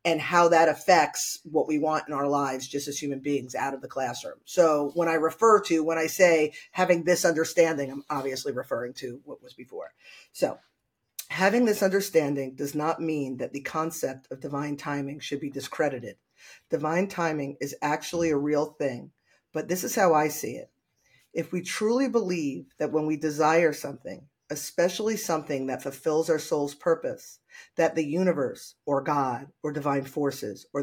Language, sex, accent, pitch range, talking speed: English, female, American, 145-175 Hz, 175 wpm